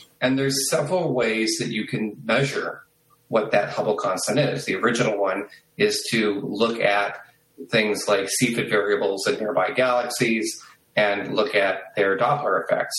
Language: English